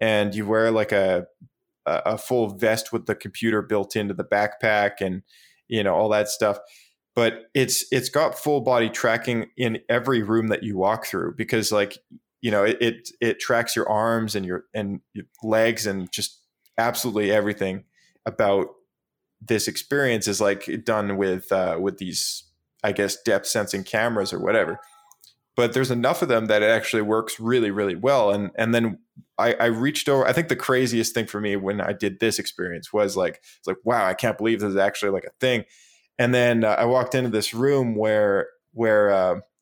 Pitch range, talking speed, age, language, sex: 100-120 Hz, 190 wpm, 20-39, English, male